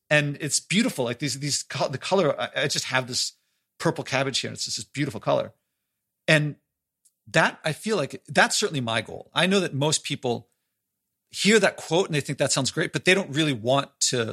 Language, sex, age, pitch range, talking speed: English, male, 40-59, 125-165 Hz, 210 wpm